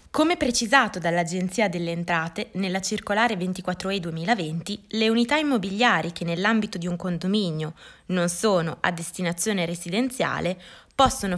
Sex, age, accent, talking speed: female, 20-39, native, 120 wpm